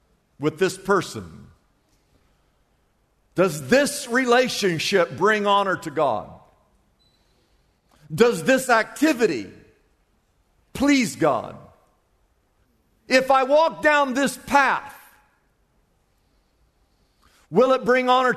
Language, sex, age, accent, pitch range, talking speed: English, male, 50-69, American, 180-255 Hz, 80 wpm